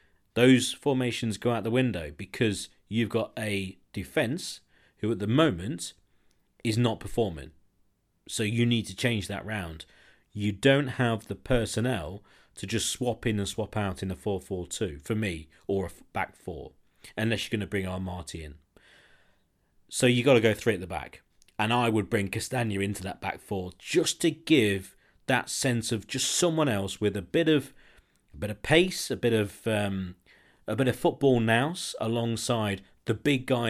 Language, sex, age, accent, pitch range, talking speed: English, male, 40-59, British, 95-120 Hz, 185 wpm